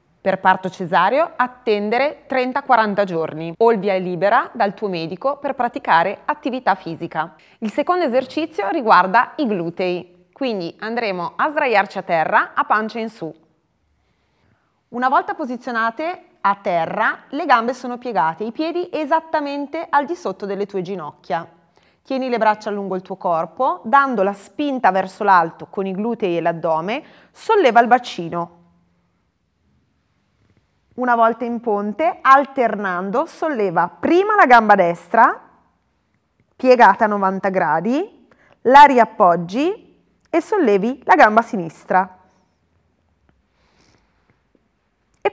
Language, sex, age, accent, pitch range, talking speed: Italian, female, 30-49, native, 170-265 Hz, 120 wpm